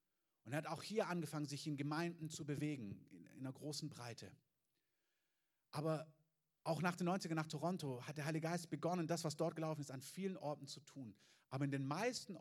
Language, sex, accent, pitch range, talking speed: German, male, German, 125-165 Hz, 200 wpm